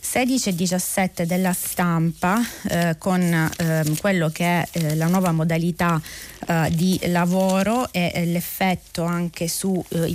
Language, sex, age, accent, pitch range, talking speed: Italian, female, 30-49, native, 165-200 Hz, 135 wpm